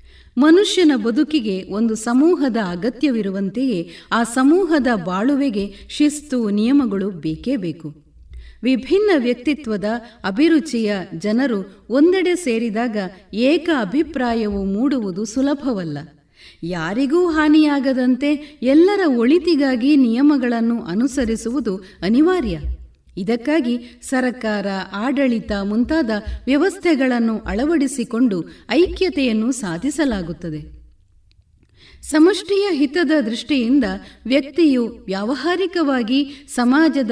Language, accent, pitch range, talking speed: Kannada, native, 205-295 Hz, 70 wpm